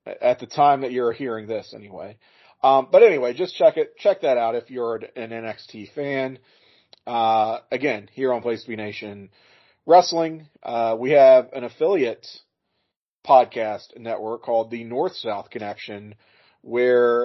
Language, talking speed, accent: English, 155 wpm, American